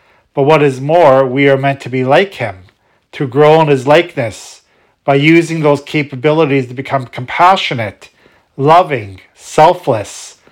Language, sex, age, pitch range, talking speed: English, male, 40-59, 130-155 Hz, 145 wpm